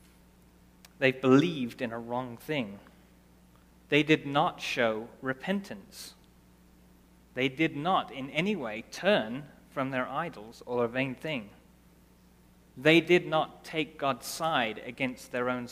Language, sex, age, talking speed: English, male, 30-49, 130 wpm